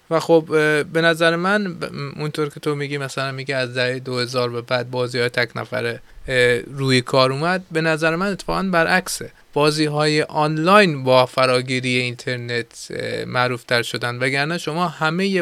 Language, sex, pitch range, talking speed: Persian, male, 130-160 Hz, 165 wpm